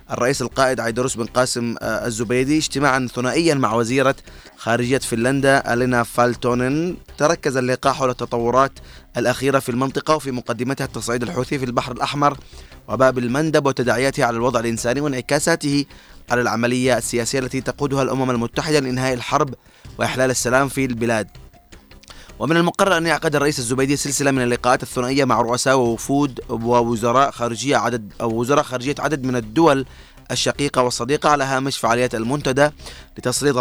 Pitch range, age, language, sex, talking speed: 120-140 Hz, 20-39, Arabic, male, 135 wpm